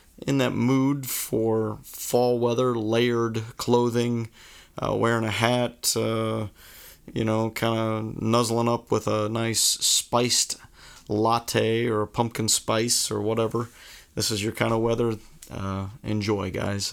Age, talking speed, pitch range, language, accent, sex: 40-59, 140 wpm, 105-120 Hz, English, American, male